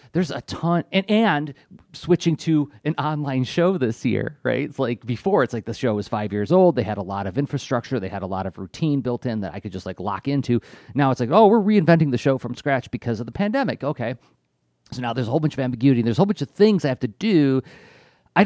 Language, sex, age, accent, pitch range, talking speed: English, male, 30-49, American, 105-145 Hz, 260 wpm